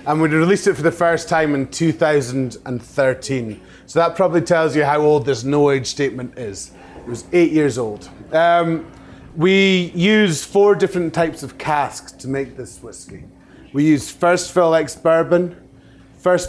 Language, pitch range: English, 135-170 Hz